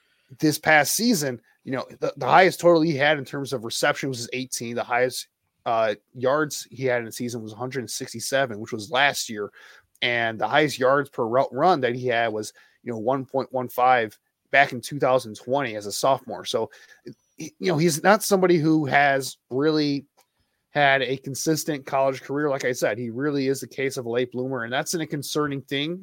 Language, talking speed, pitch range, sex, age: English, 190 wpm, 115-140 Hz, male, 20-39